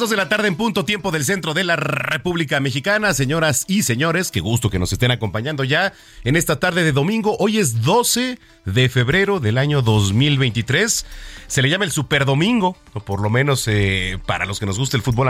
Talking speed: 210 wpm